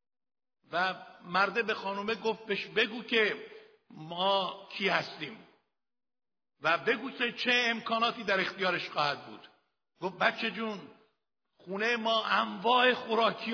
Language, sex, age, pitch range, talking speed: Persian, male, 60-79, 195-245 Hz, 120 wpm